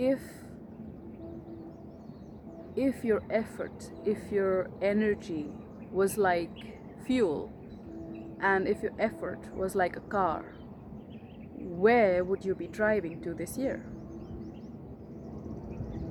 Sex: female